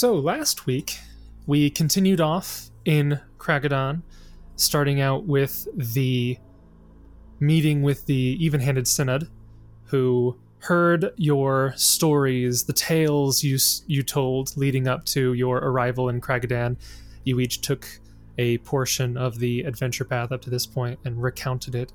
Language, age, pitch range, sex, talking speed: English, 20-39, 120-150 Hz, male, 135 wpm